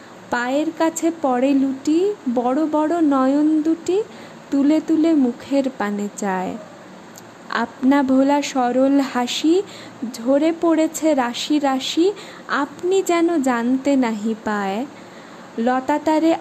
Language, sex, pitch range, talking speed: Bengali, female, 255-320 Hz, 100 wpm